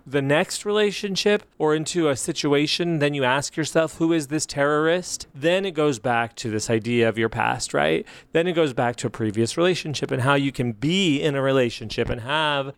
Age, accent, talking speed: 30-49, American, 205 wpm